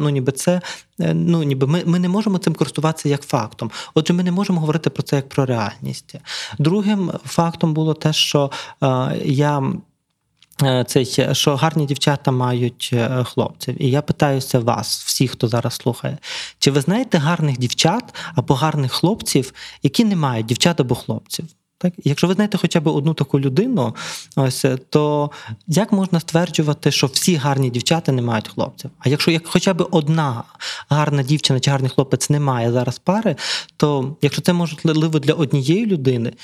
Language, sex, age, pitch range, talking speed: Ukrainian, male, 20-39, 130-170 Hz, 165 wpm